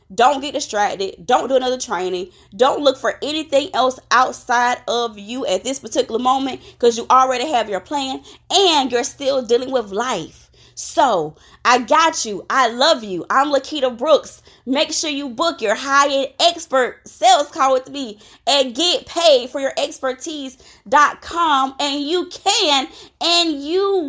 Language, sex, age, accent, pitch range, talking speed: English, female, 20-39, American, 230-300 Hz, 155 wpm